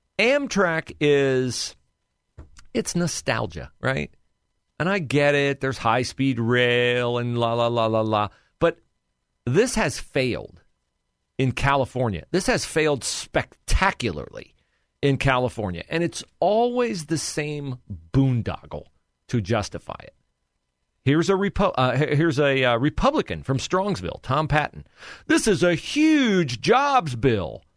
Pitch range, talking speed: 115-175 Hz, 115 wpm